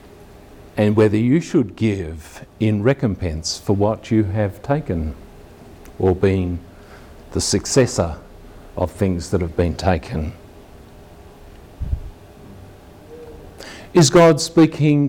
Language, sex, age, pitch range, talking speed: English, male, 50-69, 95-130 Hz, 100 wpm